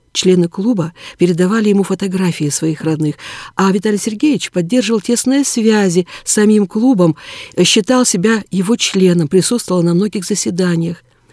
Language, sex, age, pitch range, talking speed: Russian, female, 50-69, 165-215 Hz, 125 wpm